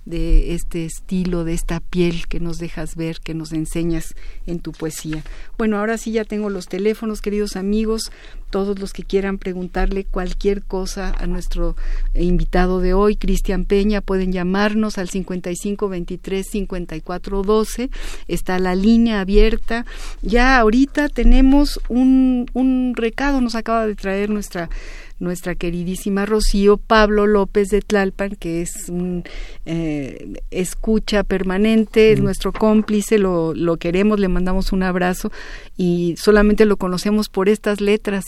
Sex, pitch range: female, 180-215 Hz